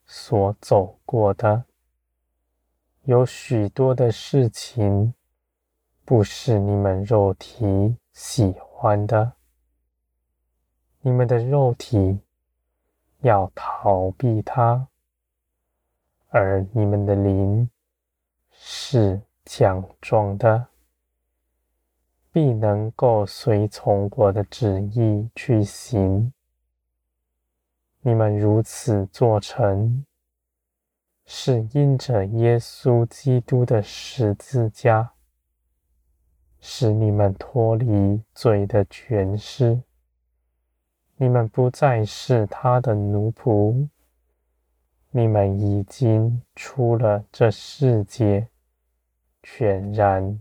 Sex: male